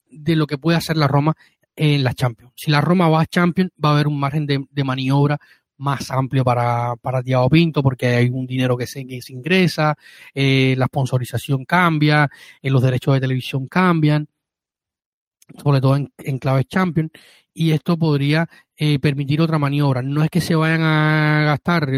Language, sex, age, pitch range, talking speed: Spanish, male, 30-49, 135-155 Hz, 185 wpm